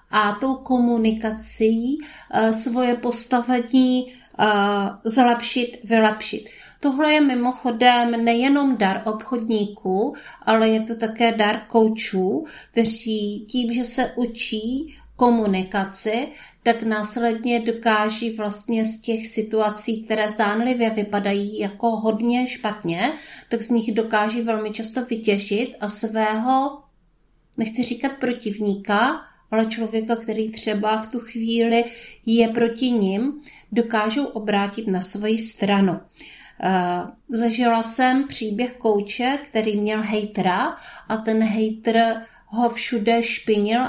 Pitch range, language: 210-240 Hz, Czech